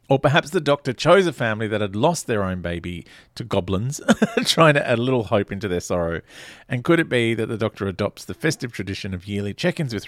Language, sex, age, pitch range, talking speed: English, male, 40-59, 100-155 Hz, 230 wpm